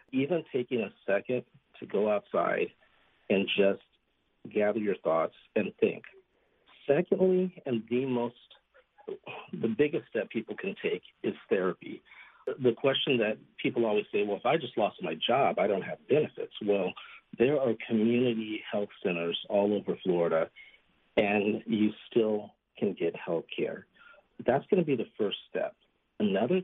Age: 50-69